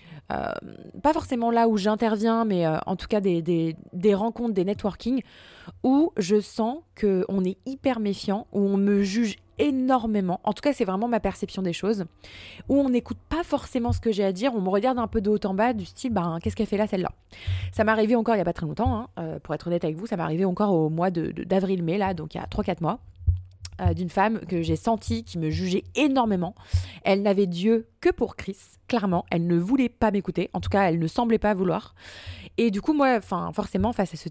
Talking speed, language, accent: 235 wpm, French, French